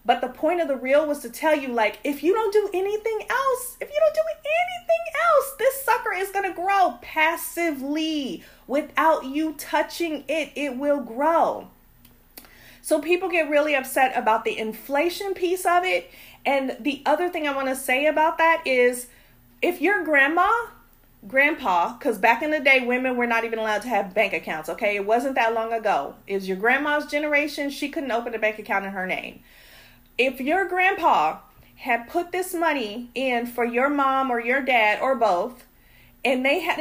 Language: English